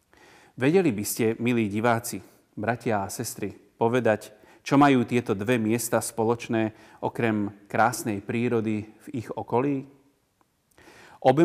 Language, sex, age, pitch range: Slovak, male, 30-49, 110-135 Hz